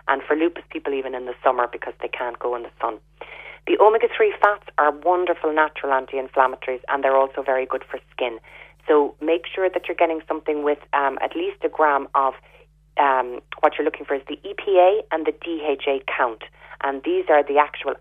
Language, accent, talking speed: English, Irish, 200 wpm